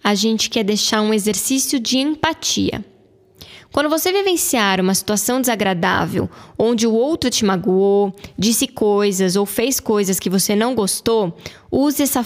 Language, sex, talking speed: Portuguese, female, 145 wpm